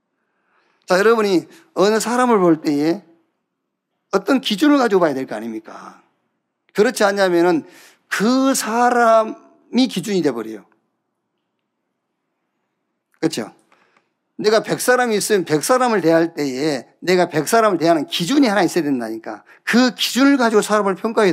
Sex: male